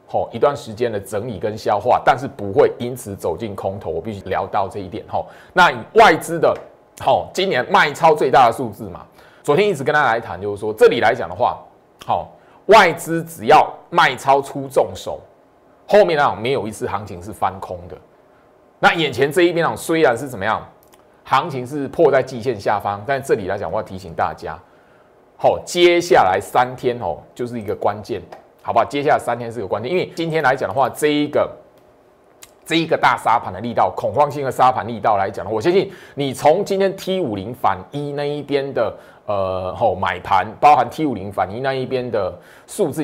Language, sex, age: Chinese, male, 30-49